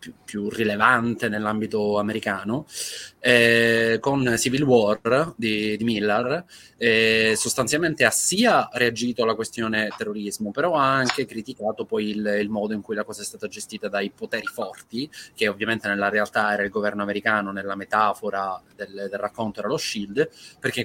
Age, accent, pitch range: 20-39, native, 105-115 Hz